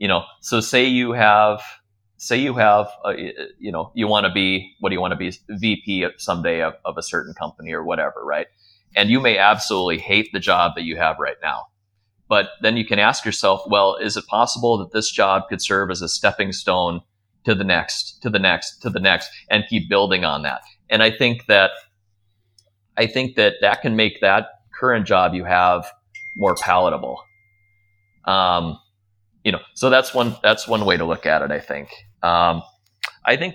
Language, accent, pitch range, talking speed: English, American, 95-105 Hz, 200 wpm